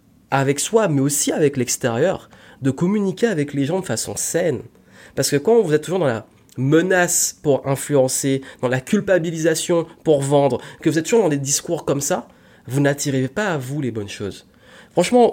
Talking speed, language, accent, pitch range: 190 wpm, French, French, 125-160 Hz